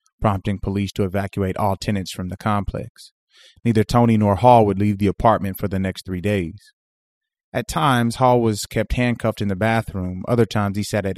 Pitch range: 95-115 Hz